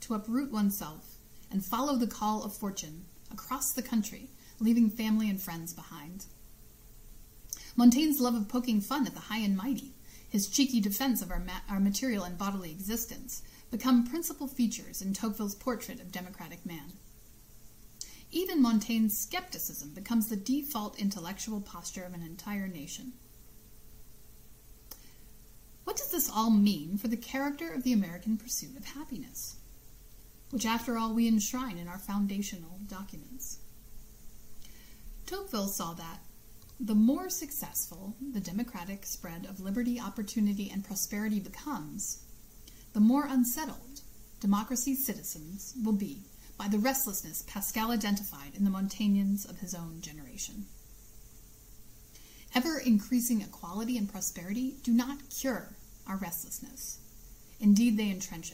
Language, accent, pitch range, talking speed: English, American, 170-235 Hz, 130 wpm